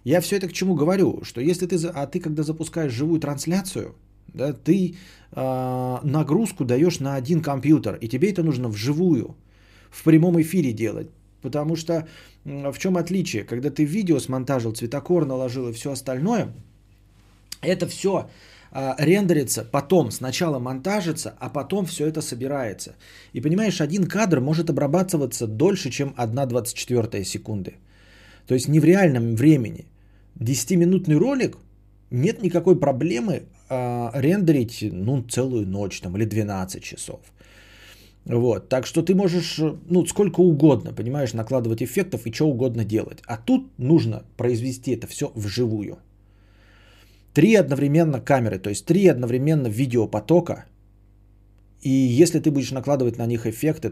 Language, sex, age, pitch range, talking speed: Bulgarian, male, 20-39, 110-160 Hz, 140 wpm